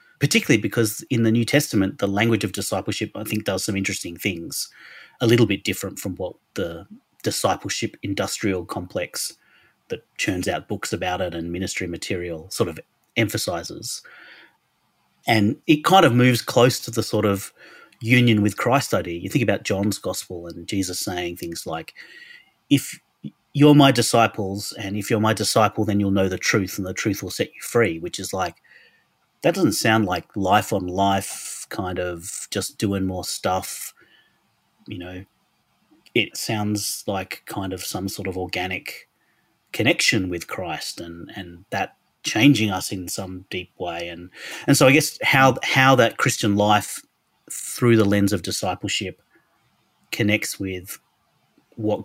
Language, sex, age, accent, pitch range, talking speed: English, male, 30-49, Australian, 95-115 Hz, 160 wpm